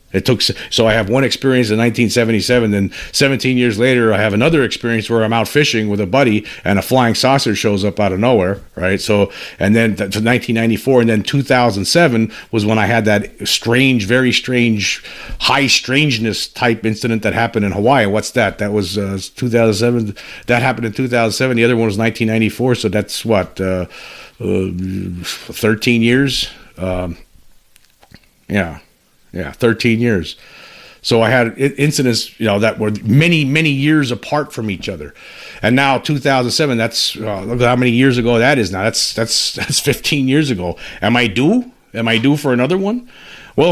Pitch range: 110-135 Hz